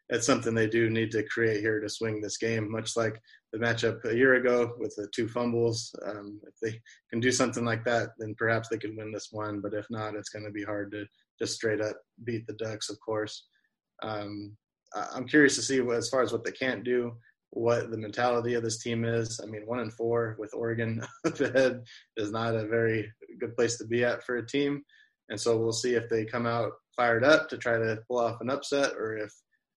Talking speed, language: 230 wpm, English